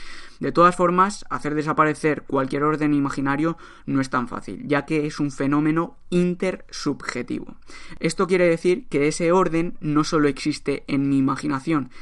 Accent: Spanish